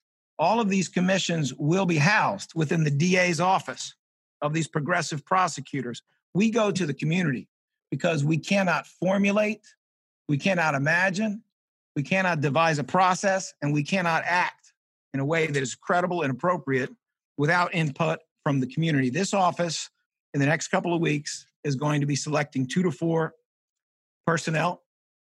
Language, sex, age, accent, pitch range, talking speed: English, male, 50-69, American, 145-180 Hz, 155 wpm